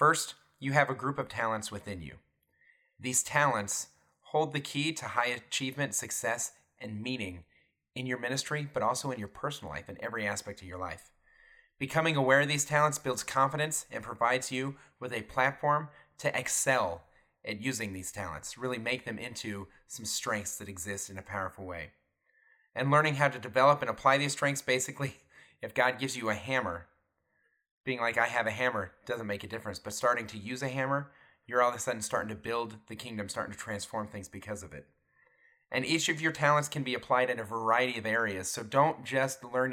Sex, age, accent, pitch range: male, 30-49, American, 105-135 Hz